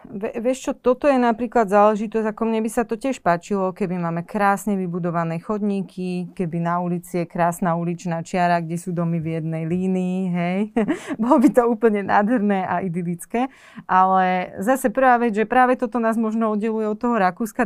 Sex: female